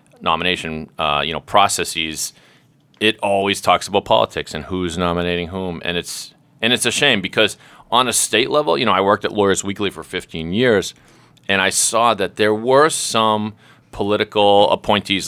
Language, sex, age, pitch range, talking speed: English, male, 40-59, 80-120 Hz, 175 wpm